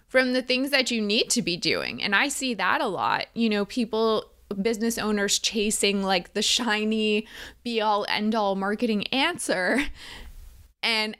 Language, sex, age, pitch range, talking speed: English, female, 20-39, 190-240 Hz, 165 wpm